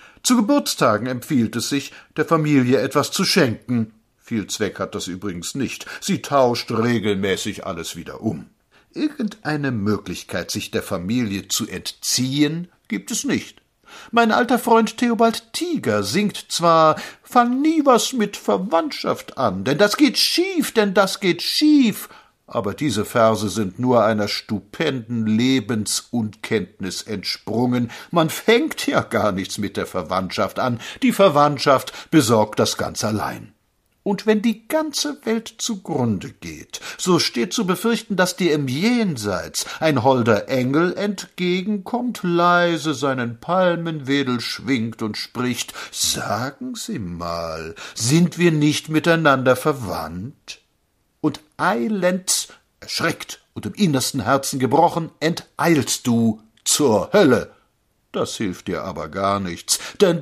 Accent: German